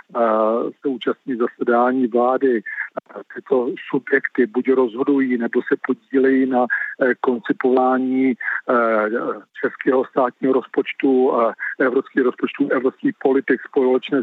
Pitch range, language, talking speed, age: 120-130 Hz, Czech, 95 wpm, 50-69